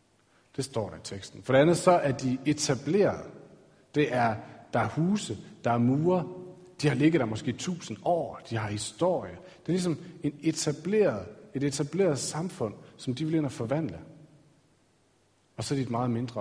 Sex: male